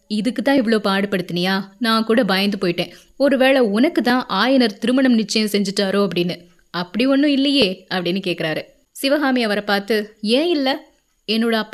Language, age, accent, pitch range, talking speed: Tamil, 20-39, native, 200-250 Hz, 85 wpm